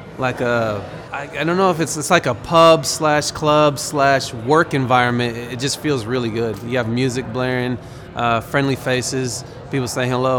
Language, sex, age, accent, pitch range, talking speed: English, male, 30-49, American, 125-155 Hz, 180 wpm